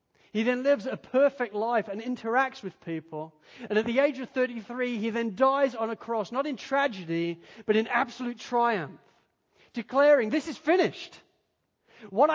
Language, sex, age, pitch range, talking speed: English, male, 40-59, 155-230 Hz, 165 wpm